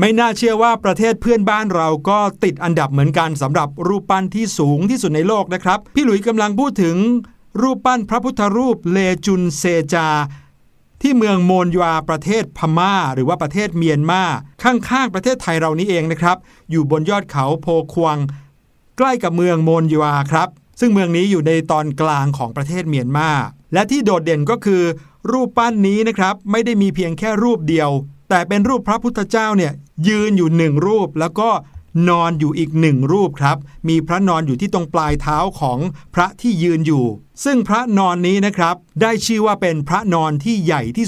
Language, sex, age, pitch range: Thai, male, 60-79, 155-210 Hz